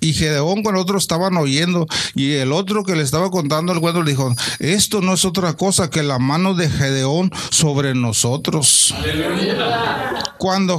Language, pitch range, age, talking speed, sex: Spanish, 135-205 Hz, 40-59, 170 wpm, male